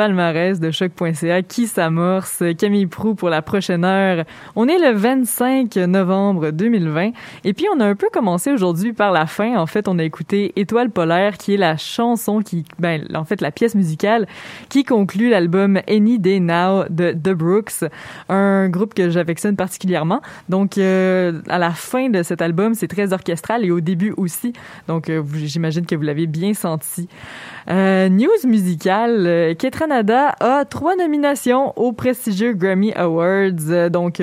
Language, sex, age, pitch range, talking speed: French, female, 20-39, 170-215 Hz, 165 wpm